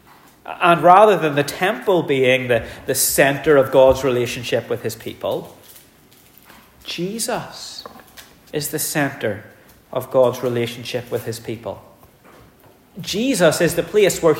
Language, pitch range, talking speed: English, 115-155 Hz, 125 wpm